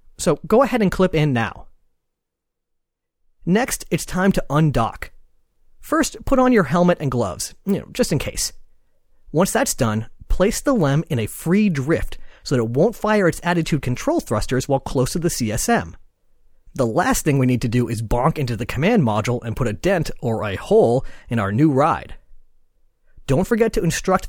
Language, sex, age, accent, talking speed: English, male, 30-49, American, 190 wpm